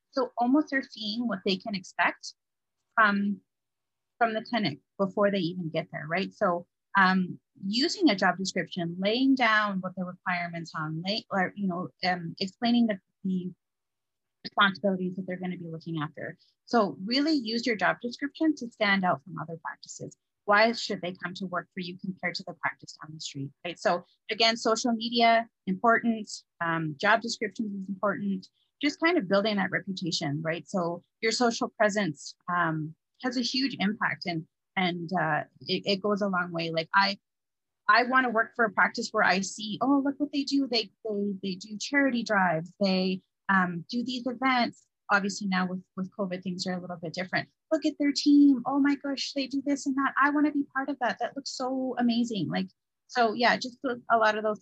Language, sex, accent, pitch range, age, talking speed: English, female, American, 180-240 Hz, 30-49, 190 wpm